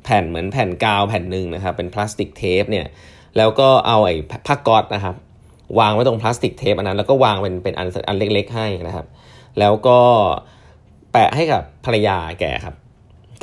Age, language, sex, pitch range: 20-39, Thai, male, 95-115 Hz